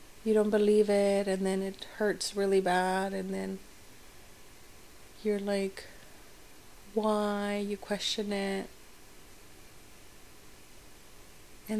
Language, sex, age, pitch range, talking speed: English, female, 30-49, 195-210 Hz, 95 wpm